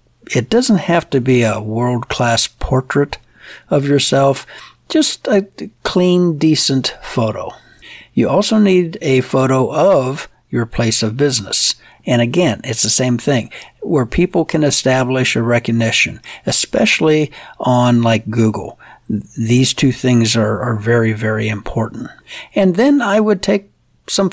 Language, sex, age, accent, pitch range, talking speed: English, male, 60-79, American, 120-165 Hz, 135 wpm